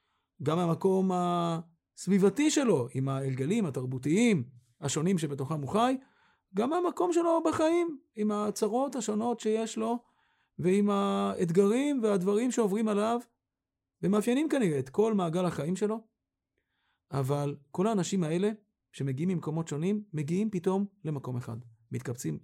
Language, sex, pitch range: Hebrew, male, 140-210 Hz